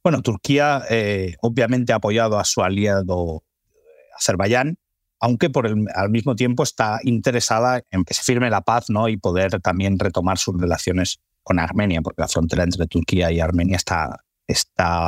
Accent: Spanish